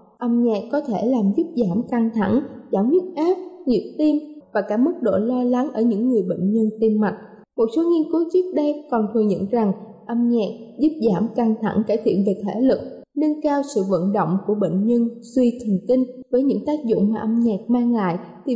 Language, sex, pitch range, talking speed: Vietnamese, female, 210-275 Hz, 225 wpm